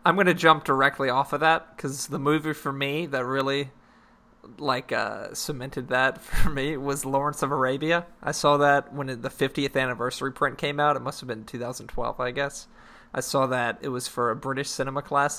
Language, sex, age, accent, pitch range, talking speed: English, male, 20-39, American, 130-150 Hz, 205 wpm